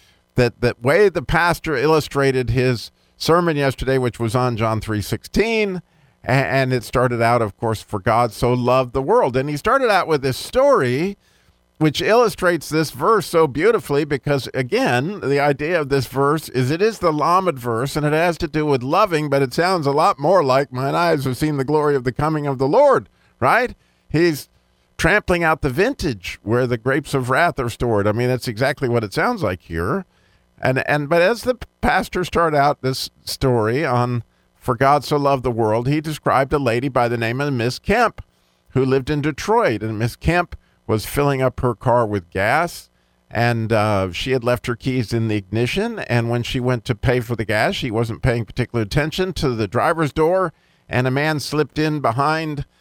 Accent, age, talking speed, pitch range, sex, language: American, 50-69, 200 wpm, 120-150 Hz, male, English